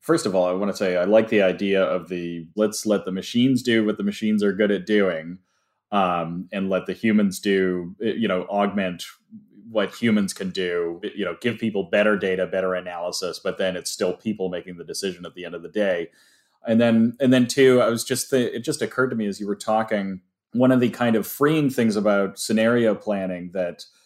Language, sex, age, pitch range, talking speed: English, male, 30-49, 95-115 Hz, 220 wpm